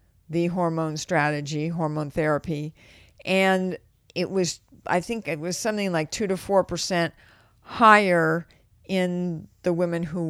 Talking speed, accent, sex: 130 wpm, American, female